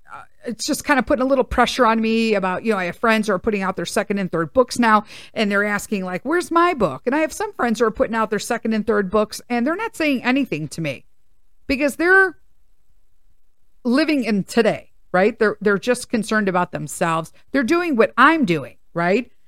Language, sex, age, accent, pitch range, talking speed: English, female, 50-69, American, 185-260 Hz, 220 wpm